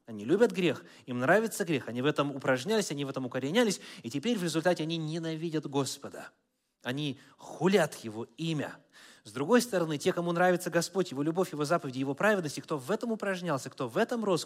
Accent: native